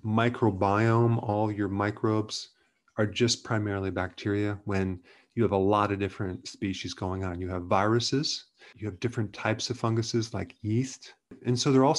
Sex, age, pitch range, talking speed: male, 30-49, 100-125 Hz, 165 wpm